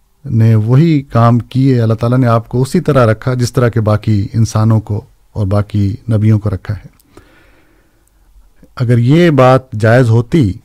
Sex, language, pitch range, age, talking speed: male, Urdu, 110-130 Hz, 50-69, 165 wpm